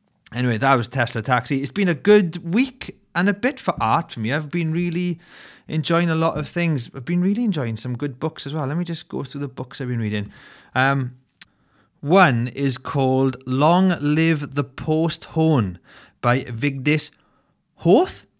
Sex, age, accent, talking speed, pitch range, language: male, 30-49, British, 185 wpm, 125-170 Hz, English